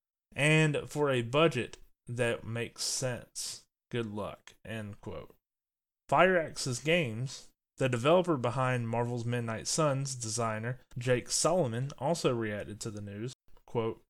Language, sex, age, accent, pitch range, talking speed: English, male, 20-39, American, 115-140 Hz, 115 wpm